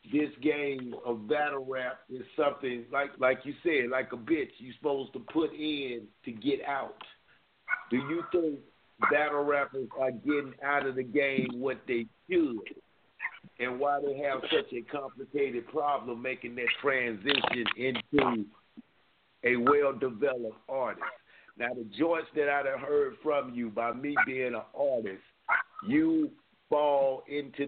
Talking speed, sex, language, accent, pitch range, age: 150 wpm, male, English, American, 125-150 Hz, 50-69